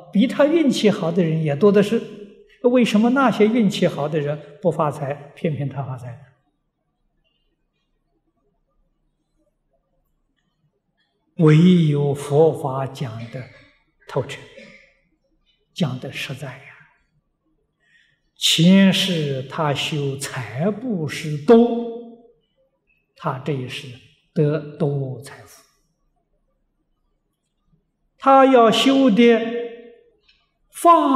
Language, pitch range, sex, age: Chinese, 145-235 Hz, male, 60-79